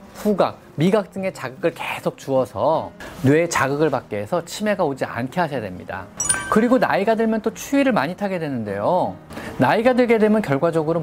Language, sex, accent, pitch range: Korean, male, native, 125-195 Hz